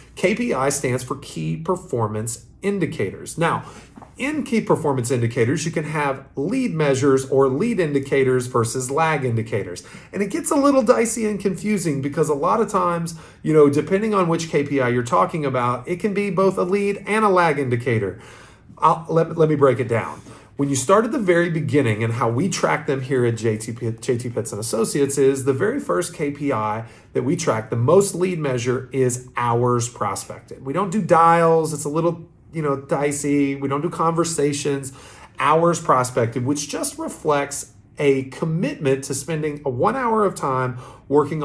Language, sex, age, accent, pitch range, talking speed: English, male, 40-59, American, 125-170 Hz, 180 wpm